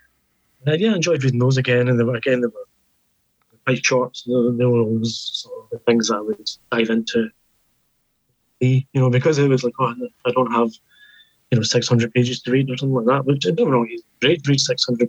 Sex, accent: male, British